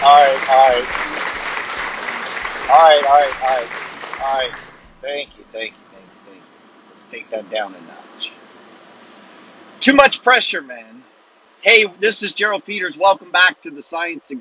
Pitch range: 115-140 Hz